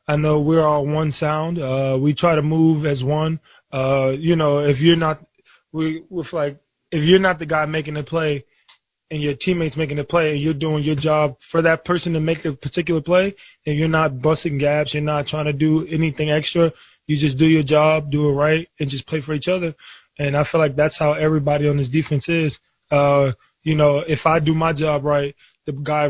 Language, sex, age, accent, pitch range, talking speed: English, male, 20-39, American, 140-160 Hz, 225 wpm